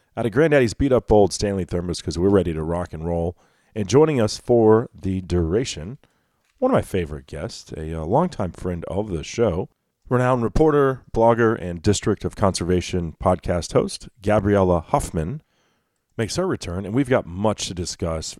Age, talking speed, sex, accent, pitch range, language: 40-59, 170 wpm, male, American, 85-105 Hz, English